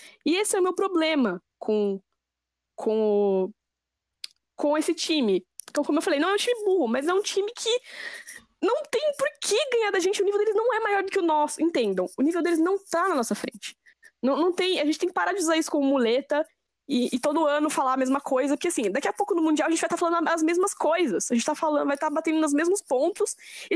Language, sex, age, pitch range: Portuguese, female, 10-29, 230-335 Hz